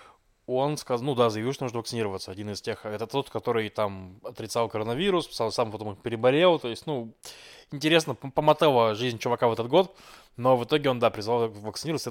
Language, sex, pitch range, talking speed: Russian, male, 115-135 Hz, 185 wpm